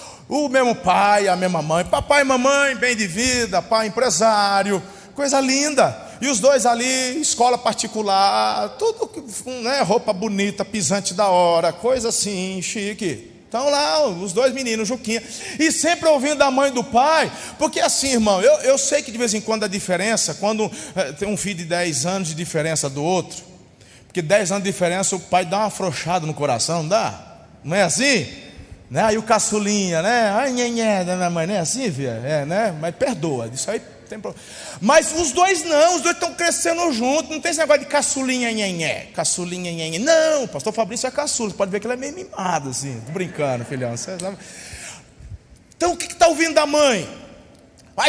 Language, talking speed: Portuguese, 200 wpm